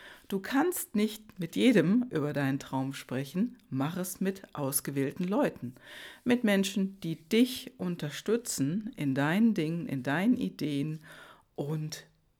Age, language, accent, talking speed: 60-79, German, German, 125 wpm